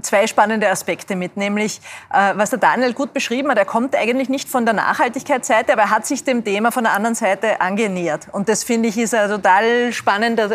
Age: 30-49